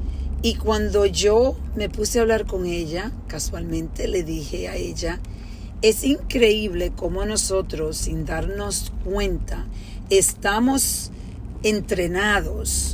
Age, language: 40-59, Spanish